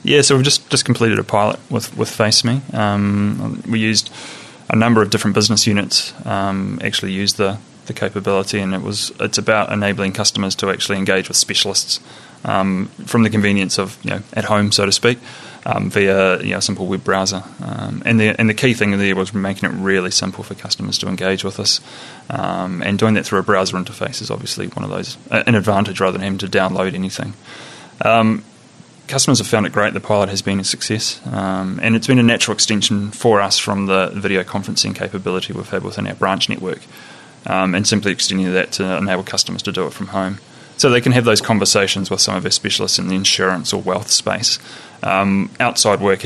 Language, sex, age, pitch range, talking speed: English, male, 20-39, 95-110 Hz, 215 wpm